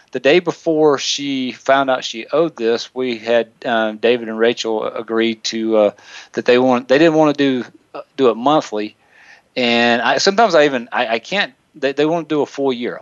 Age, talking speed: 40-59, 210 wpm